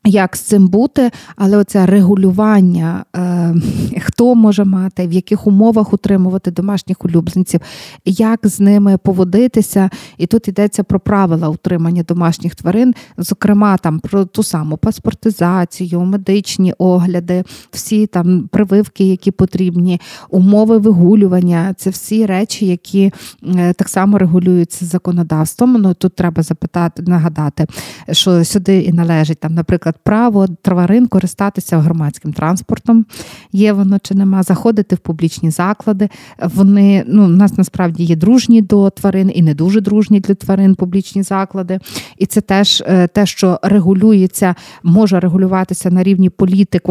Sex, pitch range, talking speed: female, 175-200 Hz, 130 wpm